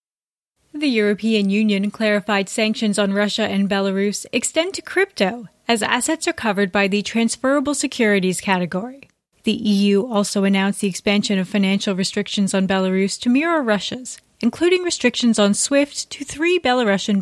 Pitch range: 205-260 Hz